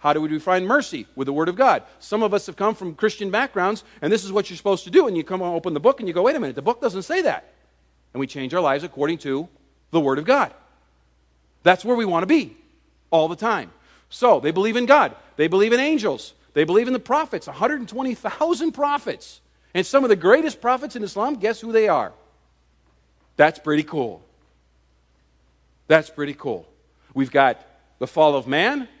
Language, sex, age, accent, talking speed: English, male, 50-69, American, 215 wpm